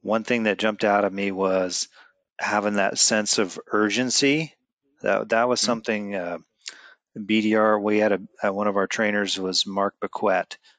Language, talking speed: English, 165 wpm